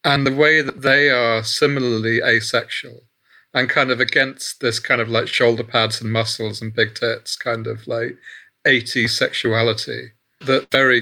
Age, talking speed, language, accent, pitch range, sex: 30-49, 165 wpm, English, British, 115-145 Hz, male